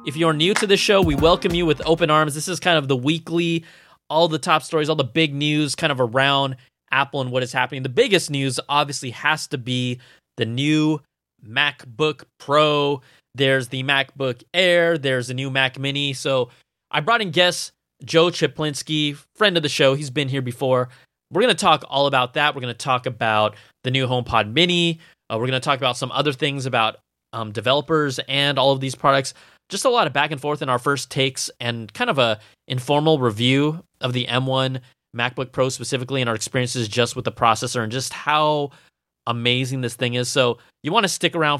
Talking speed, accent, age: 210 wpm, American, 20-39